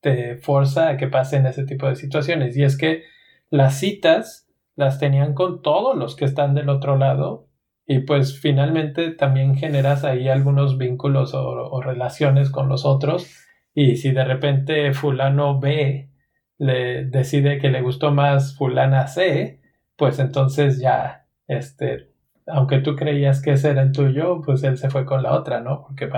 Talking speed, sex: 165 wpm, male